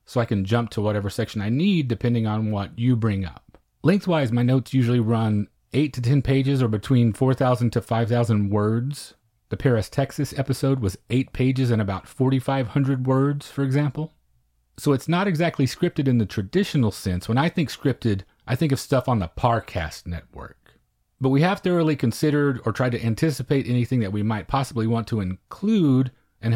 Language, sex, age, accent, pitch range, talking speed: English, male, 30-49, American, 110-140 Hz, 185 wpm